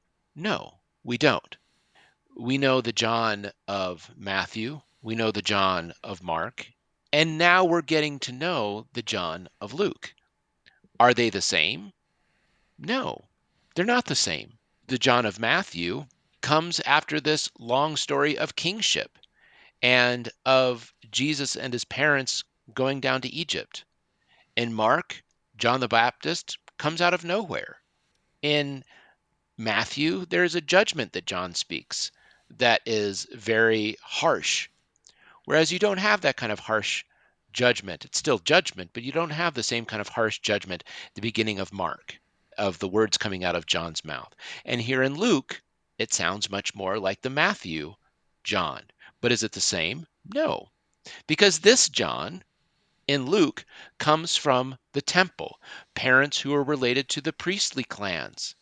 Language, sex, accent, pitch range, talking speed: English, male, American, 110-155 Hz, 150 wpm